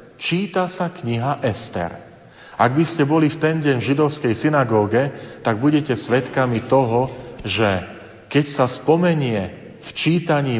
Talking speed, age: 135 wpm, 40-59